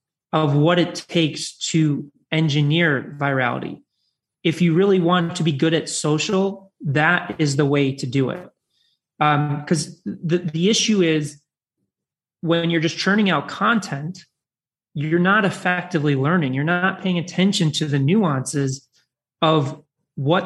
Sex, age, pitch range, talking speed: male, 30-49, 145-175 Hz, 140 wpm